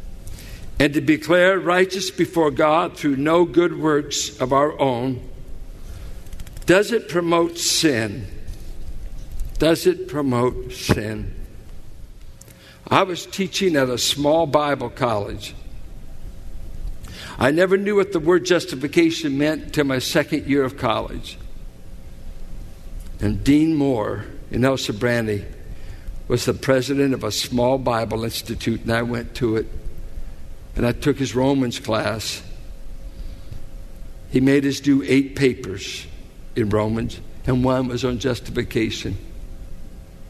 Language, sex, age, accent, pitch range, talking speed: English, male, 60-79, American, 105-150 Hz, 120 wpm